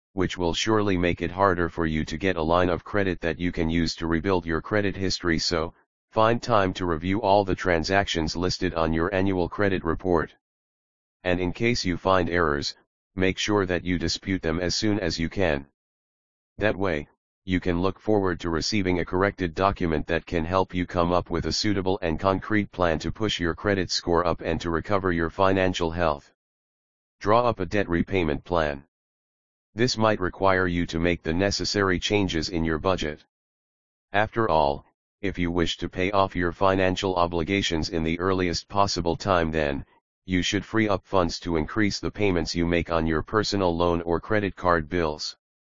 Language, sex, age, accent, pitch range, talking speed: English, male, 40-59, American, 80-95 Hz, 190 wpm